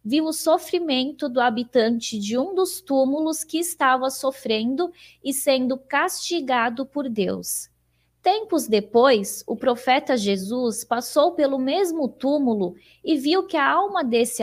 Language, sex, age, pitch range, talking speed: Portuguese, female, 20-39, 235-300 Hz, 135 wpm